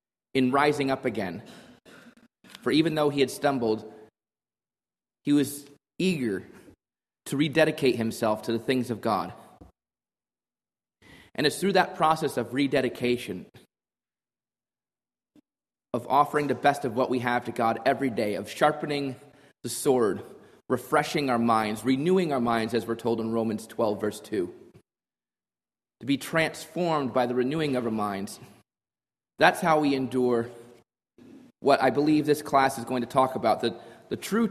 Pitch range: 115-150 Hz